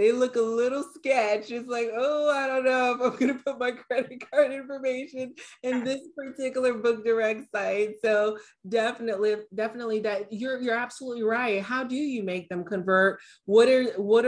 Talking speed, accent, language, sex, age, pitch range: 180 wpm, American, English, female, 30-49, 190-250 Hz